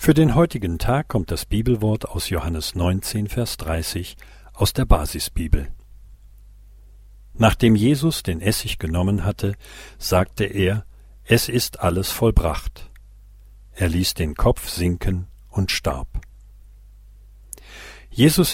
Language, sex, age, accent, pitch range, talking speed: German, male, 50-69, German, 90-110 Hz, 115 wpm